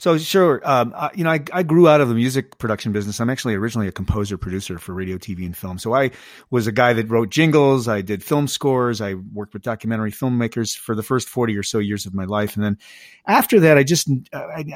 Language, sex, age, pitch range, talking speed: English, male, 40-59, 110-140 Hz, 240 wpm